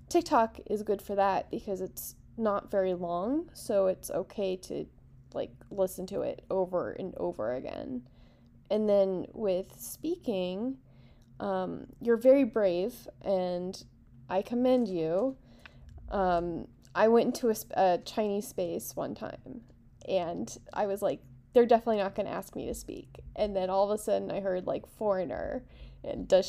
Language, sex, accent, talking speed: English, female, American, 160 wpm